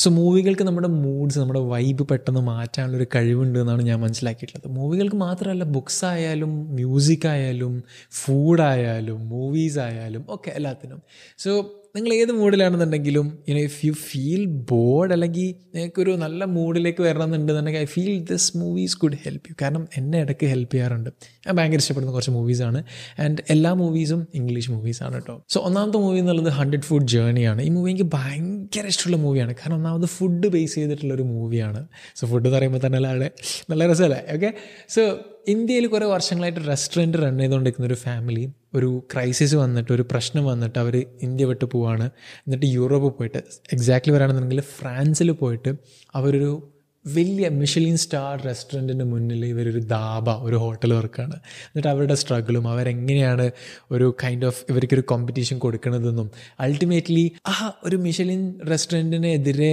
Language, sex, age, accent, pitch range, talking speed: Malayalam, male, 20-39, native, 125-165 Hz, 145 wpm